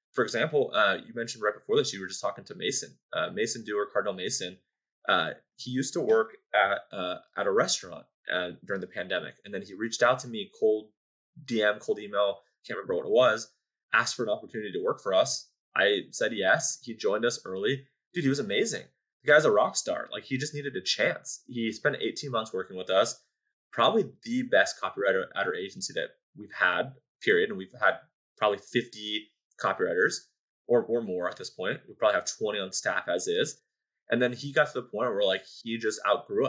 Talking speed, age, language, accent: 210 wpm, 20-39, English, American